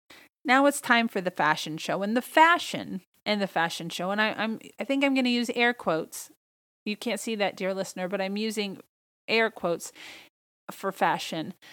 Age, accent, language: 30-49, American, English